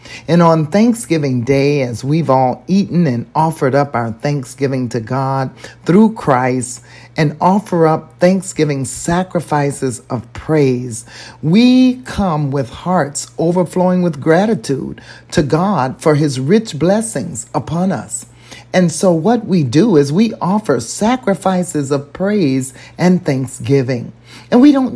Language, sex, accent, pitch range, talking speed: English, male, American, 130-175 Hz, 130 wpm